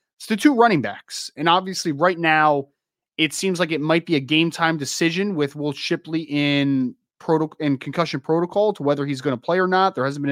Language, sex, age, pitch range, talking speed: English, male, 20-39, 135-175 Hz, 225 wpm